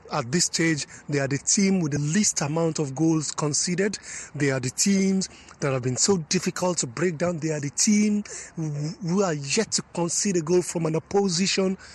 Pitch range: 150-200 Hz